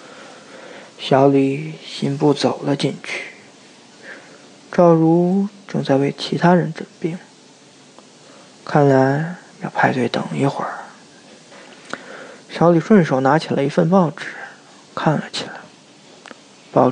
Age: 20-39